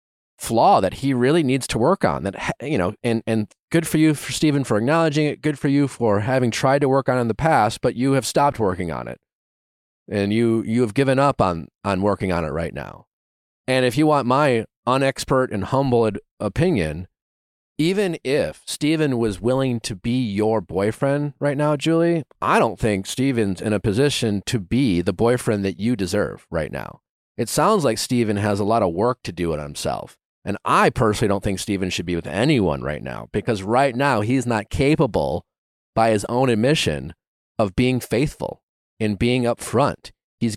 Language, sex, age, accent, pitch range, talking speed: English, male, 30-49, American, 100-135 Hz, 195 wpm